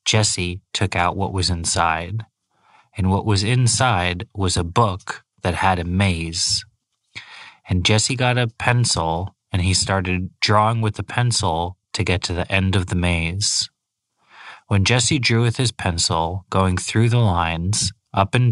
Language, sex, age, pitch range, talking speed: English, male, 30-49, 90-110 Hz, 160 wpm